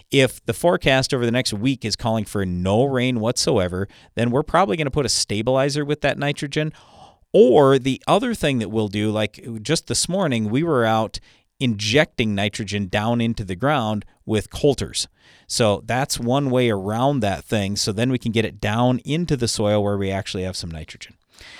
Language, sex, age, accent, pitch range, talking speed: English, male, 40-59, American, 105-135 Hz, 190 wpm